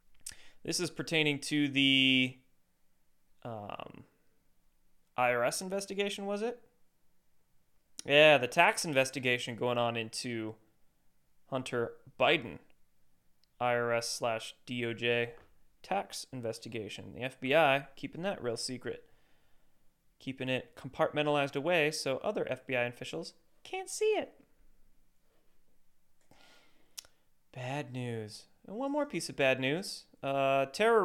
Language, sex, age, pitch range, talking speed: English, male, 20-39, 125-180 Hz, 100 wpm